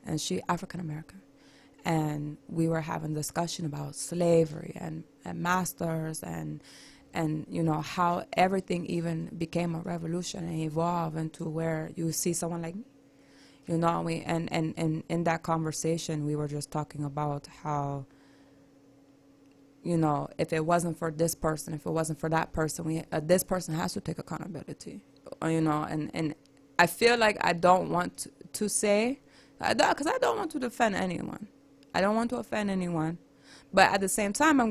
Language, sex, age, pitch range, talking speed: English, female, 20-39, 150-175 Hz, 175 wpm